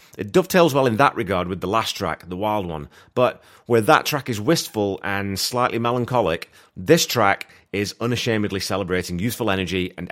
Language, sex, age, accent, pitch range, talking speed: English, male, 30-49, British, 90-115 Hz, 180 wpm